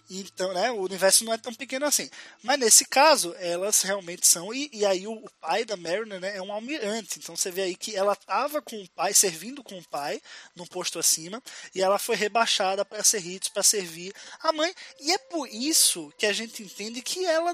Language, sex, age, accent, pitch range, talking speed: Portuguese, male, 20-39, Brazilian, 190-310 Hz, 220 wpm